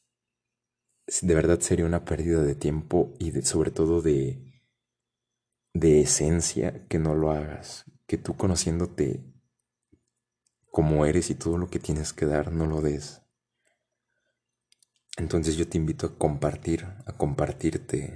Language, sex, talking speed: Spanish, male, 135 wpm